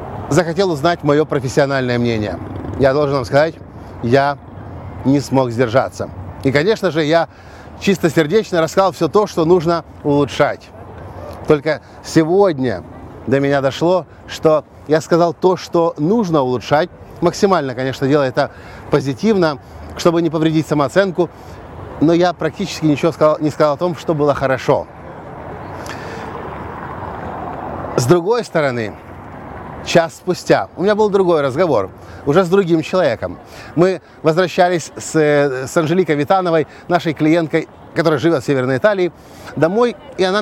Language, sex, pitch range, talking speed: Russian, male, 135-180 Hz, 130 wpm